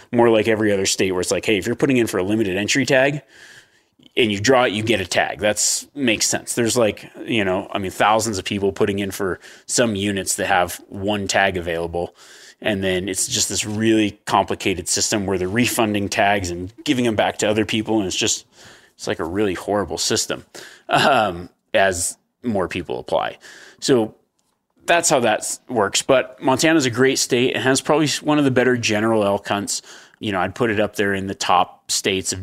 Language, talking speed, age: English, 210 wpm, 30-49